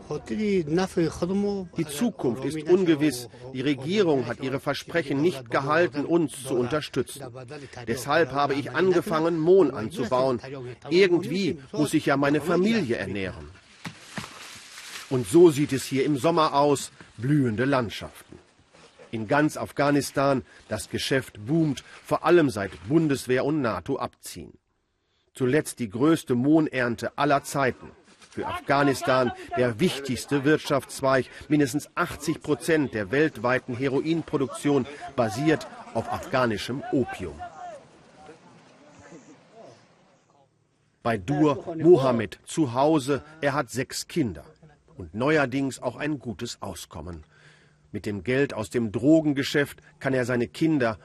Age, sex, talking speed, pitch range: 40-59, male, 115 wpm, 125-155 Hz